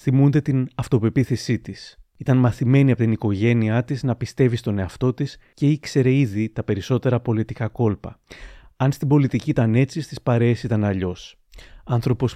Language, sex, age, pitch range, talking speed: Greek, male, 30-49, 110-140 Hz, 155 wpm